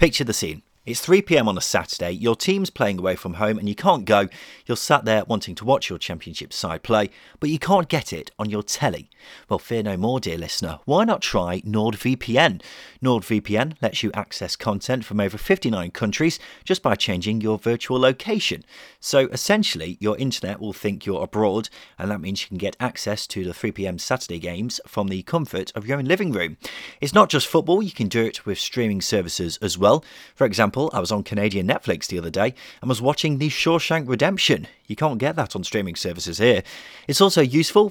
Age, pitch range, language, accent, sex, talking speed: 30-49, 100-140 Hz, English, British, male, 205 wpm